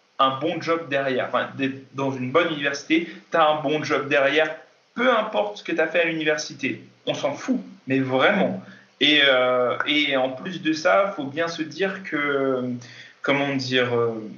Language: French